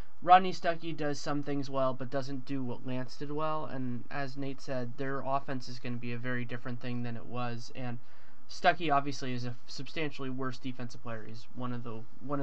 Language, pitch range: English, 125-150 Hz